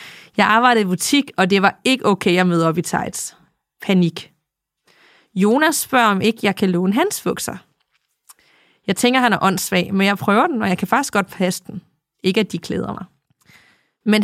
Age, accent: 30-49, native